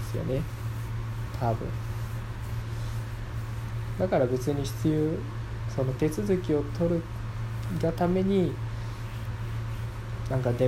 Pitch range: 115-130 Hz